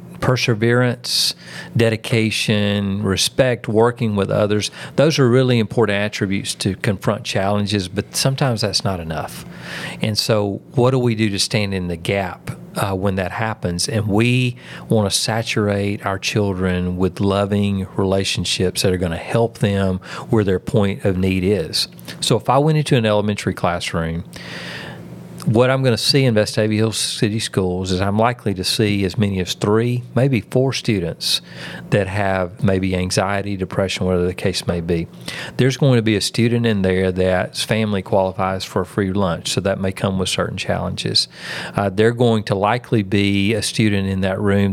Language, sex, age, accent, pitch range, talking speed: English, male, 40-59, American, 95-115 Hz, 175 wpm